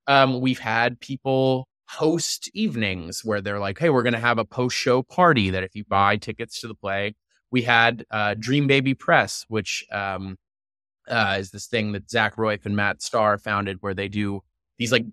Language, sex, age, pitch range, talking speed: English, male, 20-39, 105-135 Hz, 200 wpm